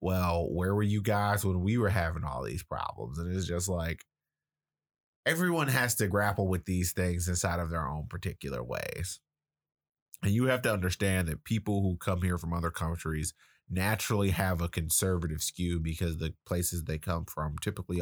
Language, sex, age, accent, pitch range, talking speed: English, male, 30-49, American, 80-100 Hz, 180 wpm